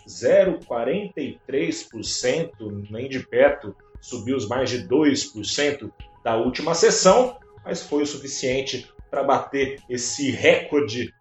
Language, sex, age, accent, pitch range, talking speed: Portuguese, male, 40-59, Brazilian, 125-180 Hz, 100 wpm